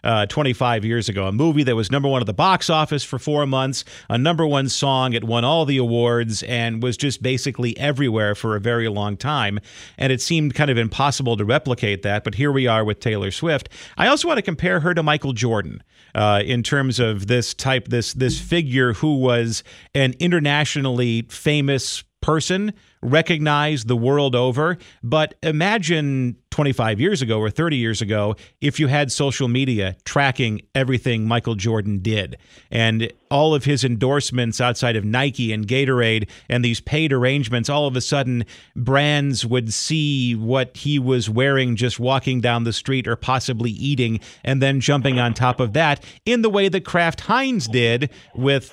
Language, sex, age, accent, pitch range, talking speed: English, male, 40-59, American, 115-145 Hz, 180 wpm